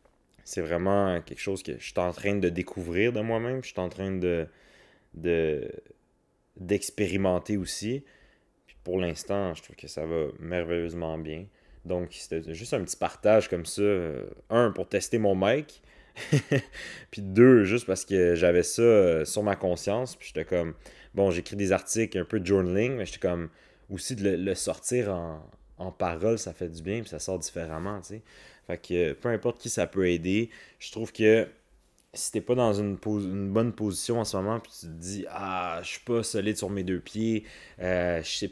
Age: 30-49